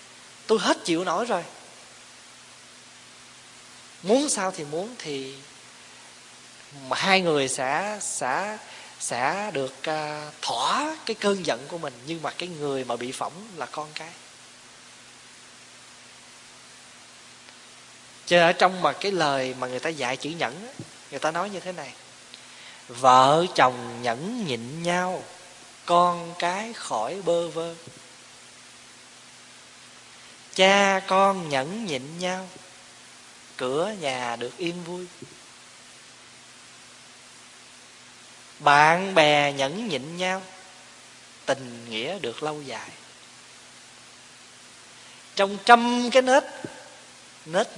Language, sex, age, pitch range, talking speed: Vietnamese, male, 20-39, 135-190 Hz, 110 wpm